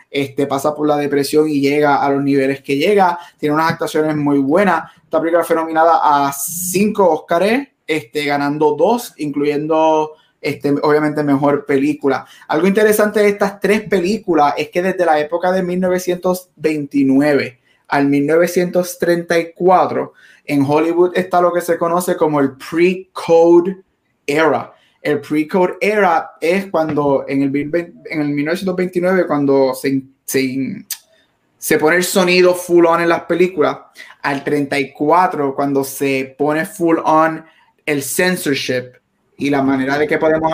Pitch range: 145-175 Hz